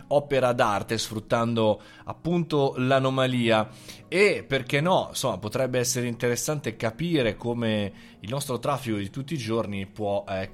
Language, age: Italian, 20-39